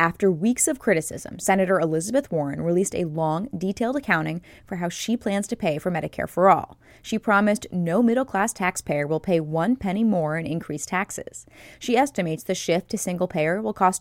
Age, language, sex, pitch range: 20-39, English, female, 165-205 Hz